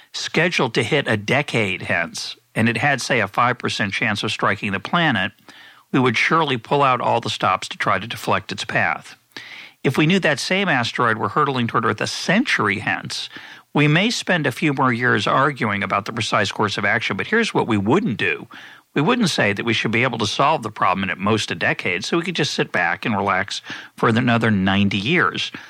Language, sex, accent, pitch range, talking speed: English, male, American, 105-135 Hz, 215 wpm